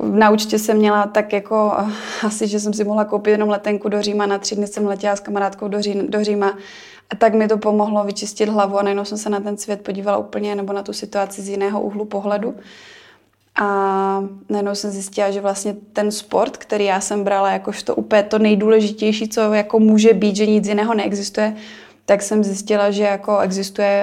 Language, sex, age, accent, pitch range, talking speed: Czech, female, 20-39, native, 200-215 Hz, 200 wpm